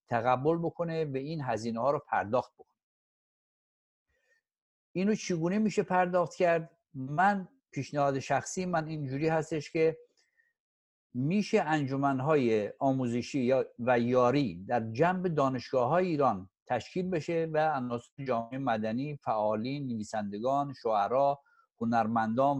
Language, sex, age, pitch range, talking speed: Persian, male, 60-79, 130-180 Hz, 110 wpm